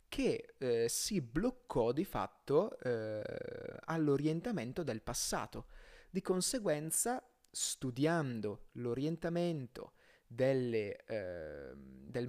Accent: native